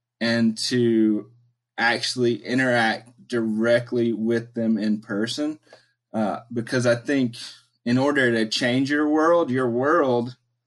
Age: 20-39